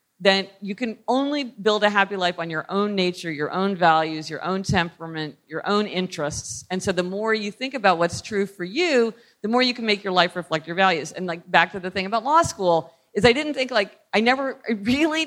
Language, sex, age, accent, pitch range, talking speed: English, female, 40-59, American, 185-250 Hz, 235 wpm